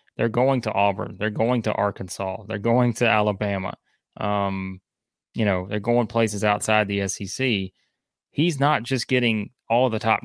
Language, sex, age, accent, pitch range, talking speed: English, male, 20-39, American, 100-125 Hz, 170 wpm